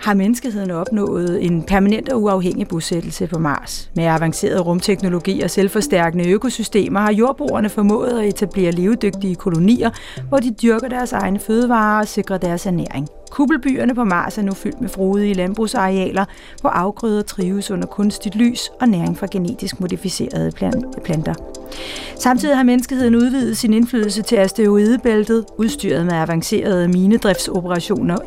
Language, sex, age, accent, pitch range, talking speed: Danish, female, 40-59, native, 180-230 Hz, 140 wpm